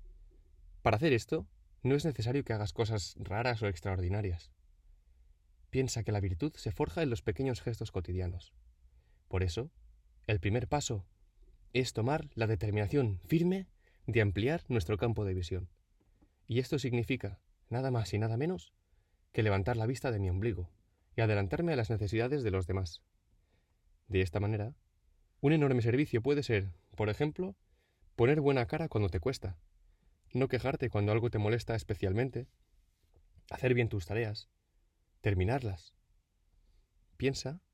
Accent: Spanish